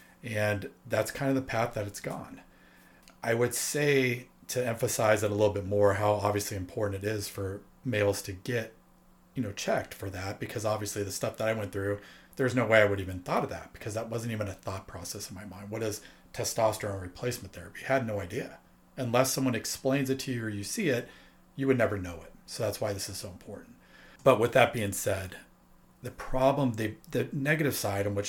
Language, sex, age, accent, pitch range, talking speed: English, male, 40-59, American, 100-125 Hz, 225 wpm